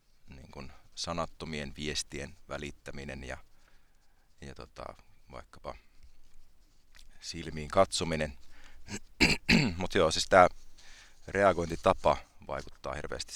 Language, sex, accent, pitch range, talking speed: Finnish, male, native, 70-85 Hz, 75 wpm